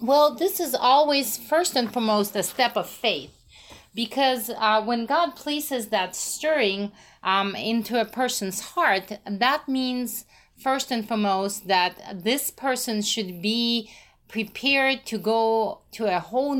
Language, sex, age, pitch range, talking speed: English, female, 30-49, 195-235 Hz, 140 wpm